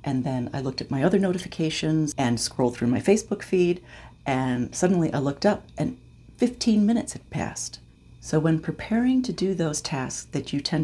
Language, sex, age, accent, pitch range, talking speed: English, female, 40-59, American, 120-170 Hz, 190 wpm